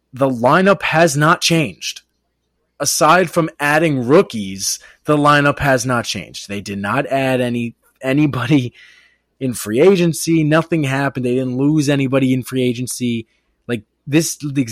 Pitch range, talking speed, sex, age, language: 115-145 Hz, 145 wpm, male, 20-39, English